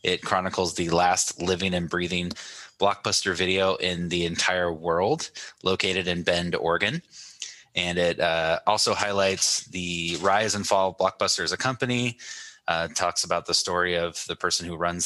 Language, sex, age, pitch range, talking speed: English, male, 20-39, 85-105 Hz, 165 wpm